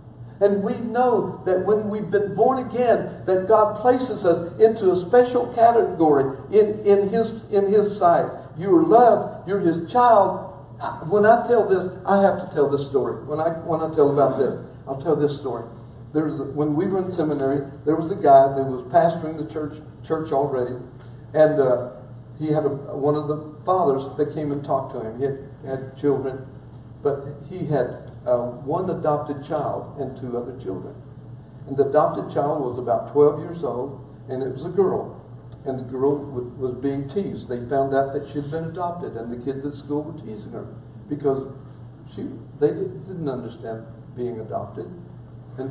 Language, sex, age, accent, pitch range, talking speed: English, male, 60-79, American, 130-175 Hz, 185 wpm